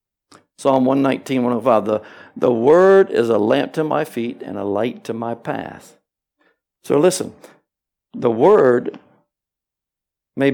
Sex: male